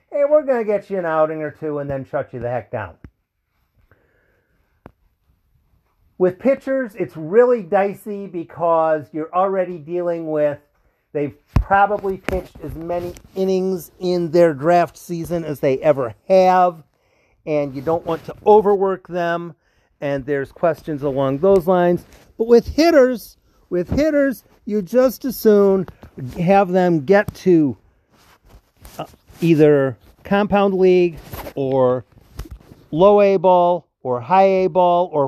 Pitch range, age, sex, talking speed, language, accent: 150-200 Hz, 50-69, male, 135 wpm, English, American